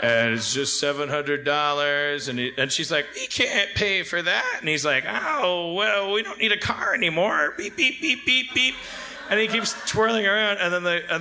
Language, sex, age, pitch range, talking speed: English, male, 30-49, 135-180 Hz, 210 wpm